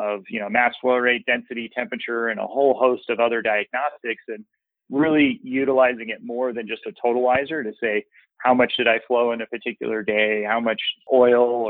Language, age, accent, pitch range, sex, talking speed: English, 30-49, American, 110-130 Hz, male, 195 wpm